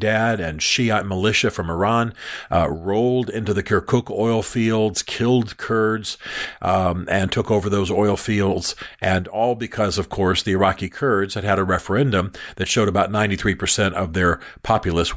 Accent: American